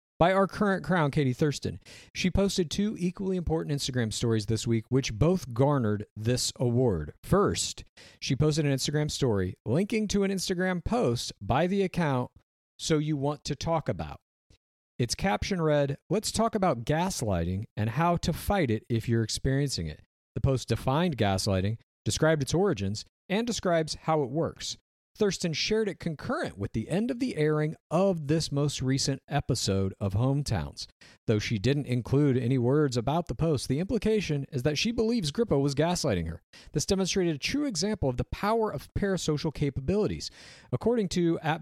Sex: male